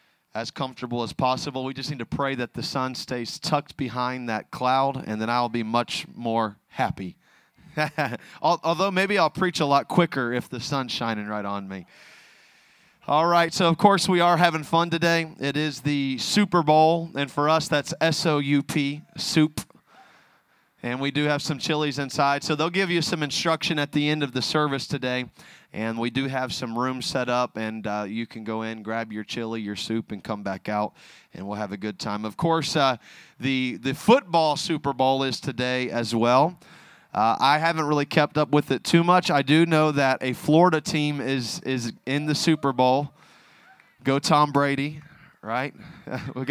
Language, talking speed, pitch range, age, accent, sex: English, 195 wpm, 125-165 Hz, 30-49, American, male